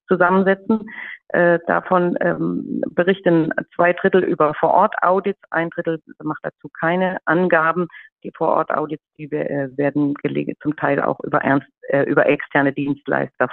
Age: 40-59